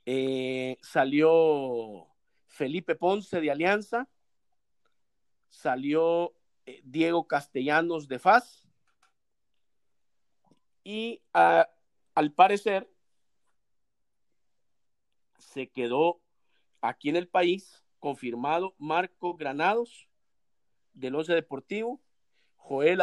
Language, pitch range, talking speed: Spanish, 135-175 Hz, 70 wpm